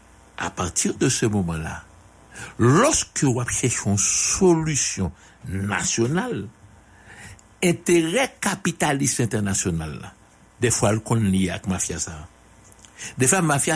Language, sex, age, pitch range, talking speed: English, male, 60-79, 100-130 Hz, 110 wpm